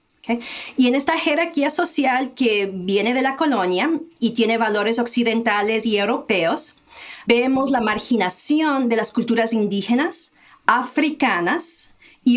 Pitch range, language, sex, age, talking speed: 220-260 Hz, English, female, 40-59, 120 wpm